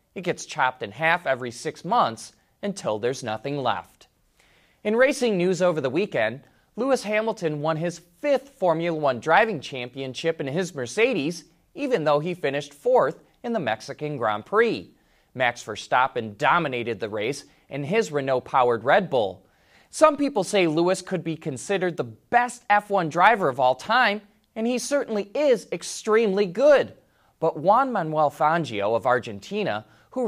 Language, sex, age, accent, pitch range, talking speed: English, male, 20-39, American, 135-210 Hz, 155 wpm